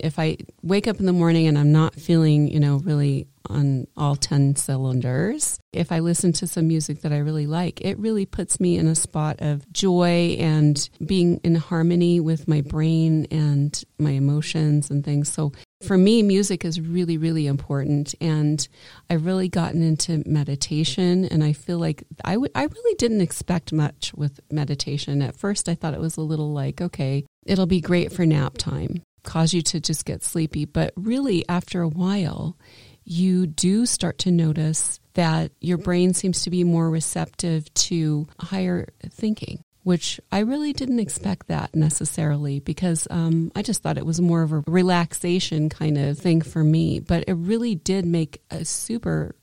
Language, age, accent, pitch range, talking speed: English, 30-49, American, 150-180 Hz, 180 wpm